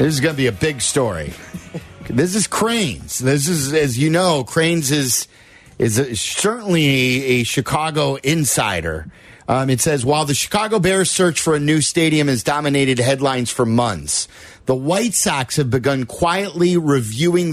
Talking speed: 165 wpm